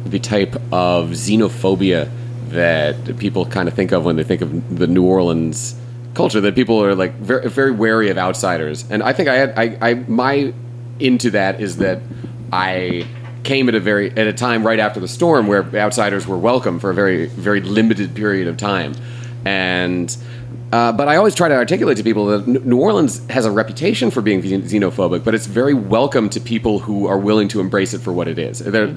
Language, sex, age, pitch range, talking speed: English, male, 30-49, 100-120 Hz, 205 wpm